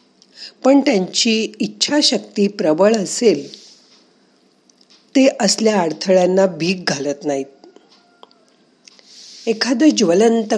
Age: 50-69